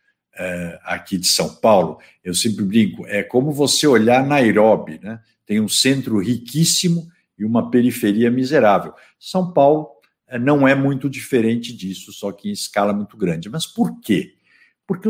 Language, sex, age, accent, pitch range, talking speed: Portuguese, male, 60-79, Brazilian, 110-170 Hz, 150 wpm